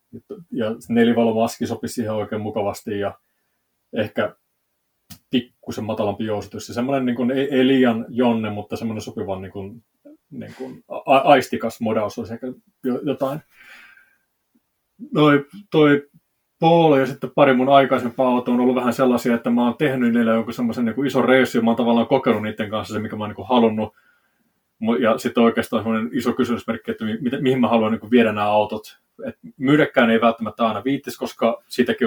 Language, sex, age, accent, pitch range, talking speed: Finnish, male, 30-49, native, 110-130 Hz, 155 wpm